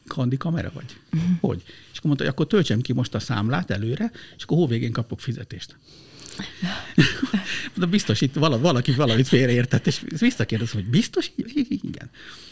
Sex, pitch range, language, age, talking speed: male, 110-145 Hz, Hungarian, 60-79, 145 wpm